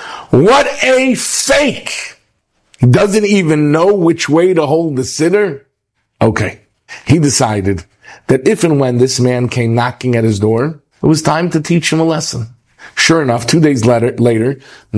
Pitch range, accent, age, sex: 110-145 Hz, American, 50-69, male